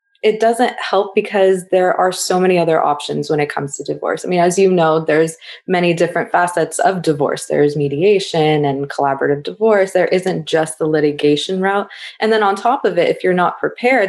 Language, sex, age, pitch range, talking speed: English, female, 20-39, 160-190 Hz, 200 wpm